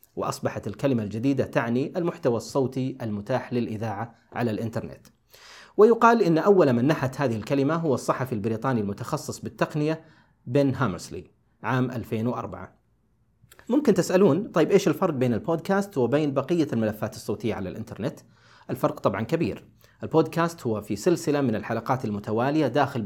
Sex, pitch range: male, 115-155 Hz